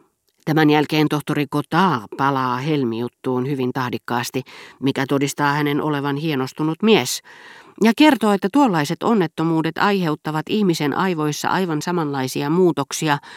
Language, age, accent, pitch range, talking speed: Finnish, 40-59, native, 125-180 Hz, 110 wpm